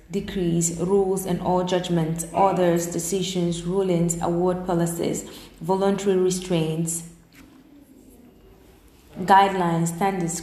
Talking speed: 80 wpm